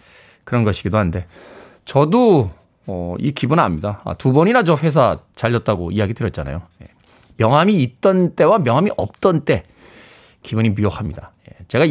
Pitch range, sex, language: 105-165 Hz, male, Korean